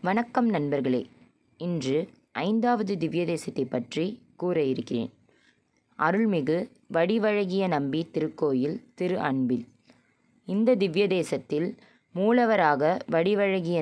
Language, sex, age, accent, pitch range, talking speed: Tamil, female, 20-39, native, 150-205 Hz, 85 wpm